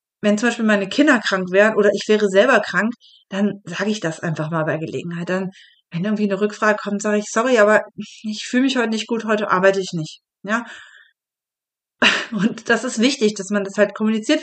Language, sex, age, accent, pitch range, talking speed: German, female, 30-49, German, 200-235 Hz, 210 wpm